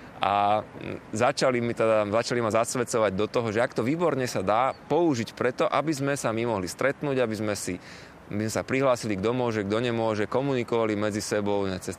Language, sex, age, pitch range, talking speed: Slovak, male, 20-39, 100-120 Hz, 190 wpm